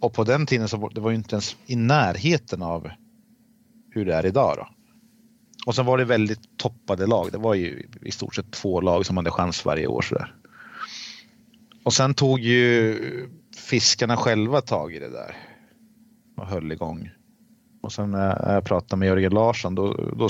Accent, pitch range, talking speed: native, 95-135 Hz, 185 wpm